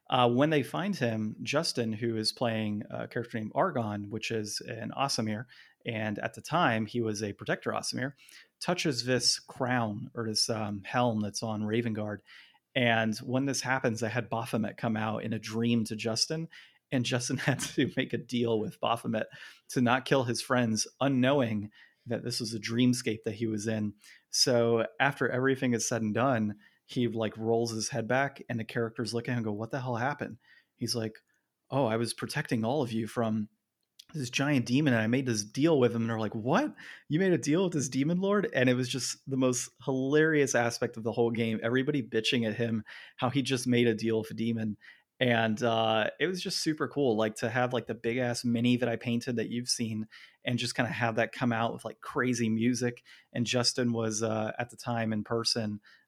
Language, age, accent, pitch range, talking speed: English, 30-49, American, 110-130 Hz, 210 wpm